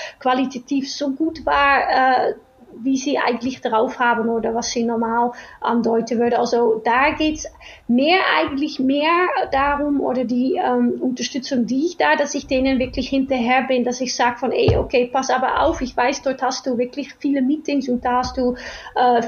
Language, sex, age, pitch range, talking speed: German, female, 30-49, 245-295 Hz, 180 wpm